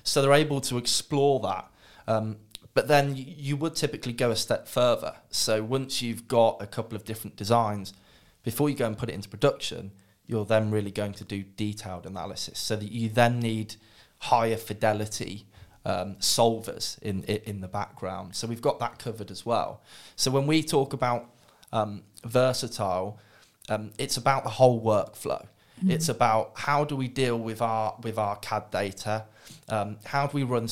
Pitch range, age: 105-130 Hz, 20-39